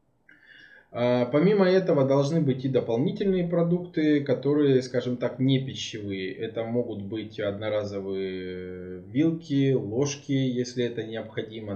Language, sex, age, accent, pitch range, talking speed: Russian, male, 20-39, native, 110-140 Hz, 105 wpm